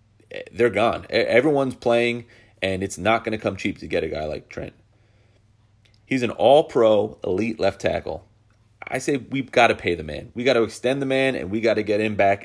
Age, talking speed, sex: 30-49, 210 wpm, male